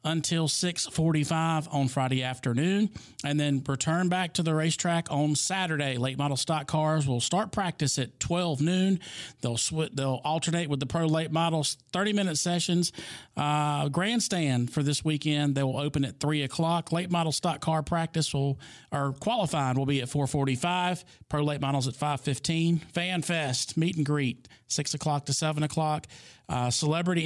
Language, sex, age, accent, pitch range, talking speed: English, male, 40-59, American, 140-165 Hz, 170 wpm